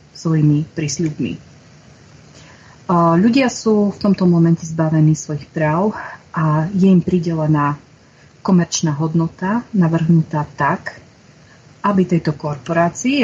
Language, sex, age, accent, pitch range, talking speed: Czech, female, 30-49, native, 155-185 Hz, 95 wpm